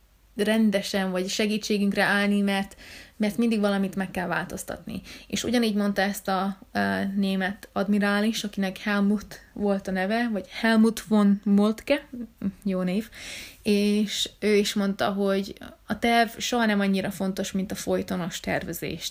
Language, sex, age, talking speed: Hungarian, female, 20-39, 140 wpm